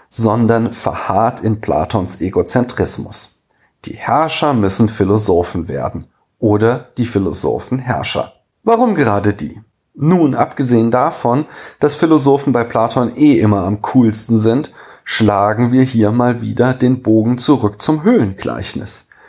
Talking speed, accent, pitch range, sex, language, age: 120 wpm, German, 105-135 Hz, male, German, 40-59